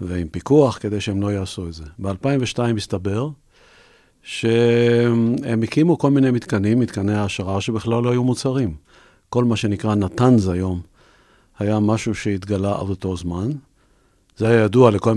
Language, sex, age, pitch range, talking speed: Hebrew, male, 50-69, 100-125 Hz, 145 wpm